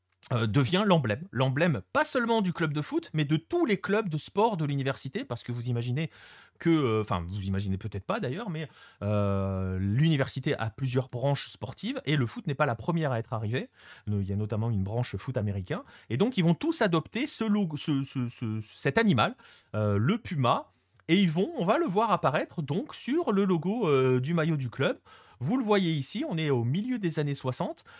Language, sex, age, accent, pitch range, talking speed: French, male, 30-49, French, 115-175 Hz, 215 wpm